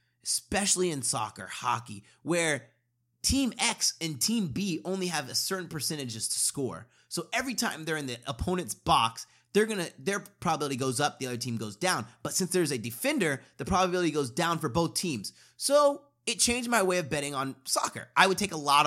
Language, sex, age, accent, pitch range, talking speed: English, male, 30-49, American, 125-185 Hz, 195 wpm